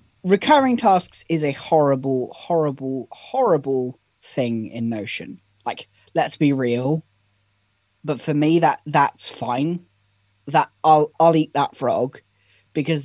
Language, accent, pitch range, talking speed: English, British, 135-165 Hz, 125 wpm